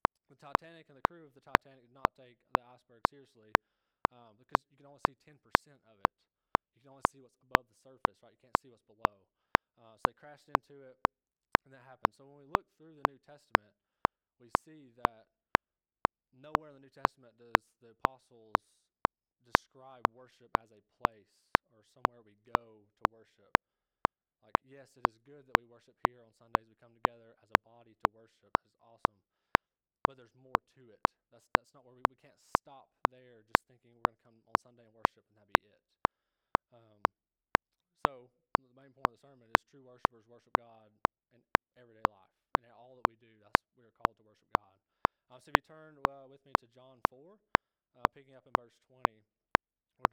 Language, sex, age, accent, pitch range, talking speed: English, male, 20-39, American, 115-135 Hz, 205 wpm